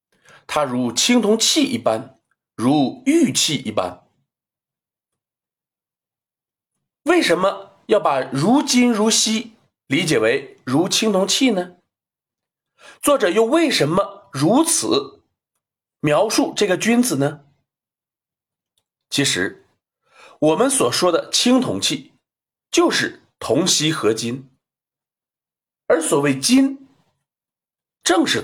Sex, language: male, Chinese